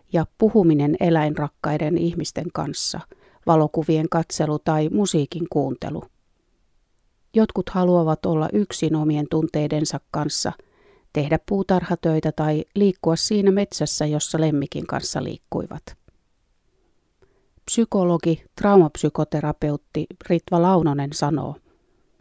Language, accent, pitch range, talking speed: Finnish, native, 150-190 Hz, 85 wpm